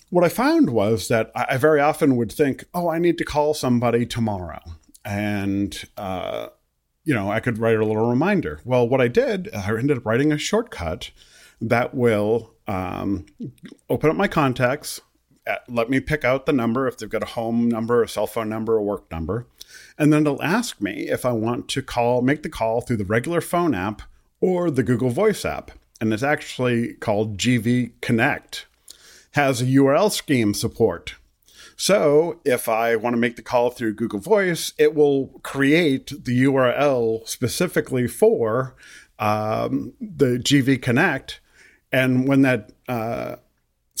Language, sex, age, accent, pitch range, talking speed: English, male, 40-59, American, 115-150 Hz, 170 wpm